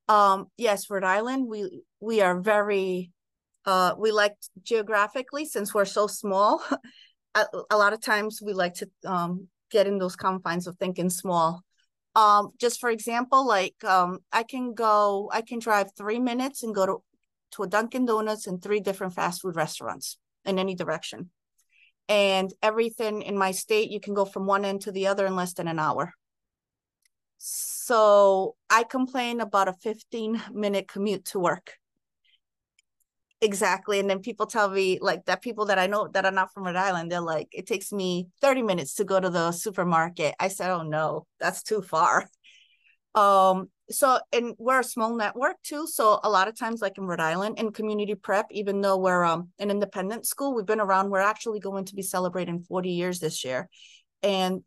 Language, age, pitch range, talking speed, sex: English, 30-49, 185-215 Hz, 185 wpm, female